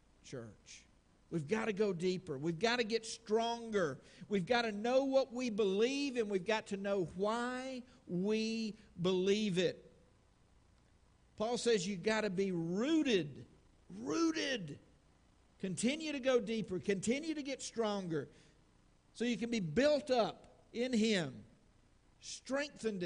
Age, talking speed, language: 50-69, 135 wpm, English